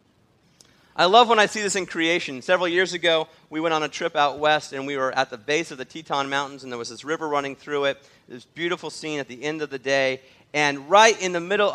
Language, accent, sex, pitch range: English, American, male, 140-185 Hz